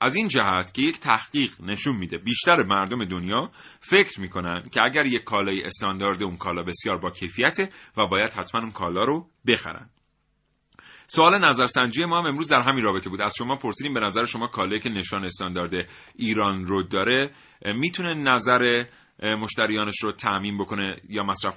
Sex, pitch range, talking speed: male, 95-135 Hz, 165 wpm